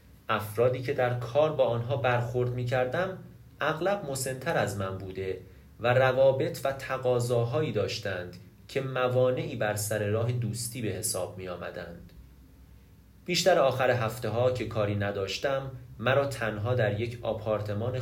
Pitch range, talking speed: 105-130 Hz, 135 wpm